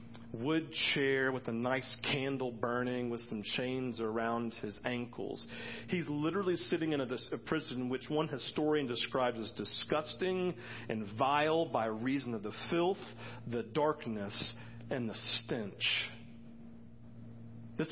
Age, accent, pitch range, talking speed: 40-59, American, 115-150 Hz, 130 wpm